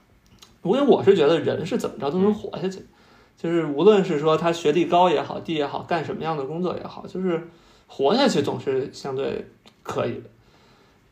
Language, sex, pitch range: Chinese, male, 160-210 Hz